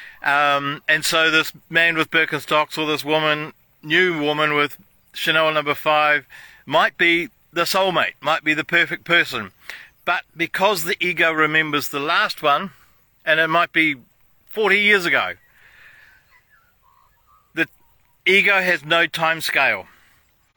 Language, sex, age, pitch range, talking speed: English, male, 50-69, 155-190 Hz, 135 wpm